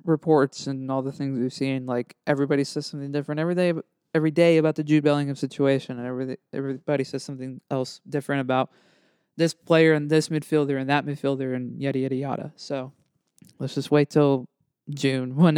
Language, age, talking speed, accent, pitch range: English, 20-39, 185 wpm, American, 135-180 Hz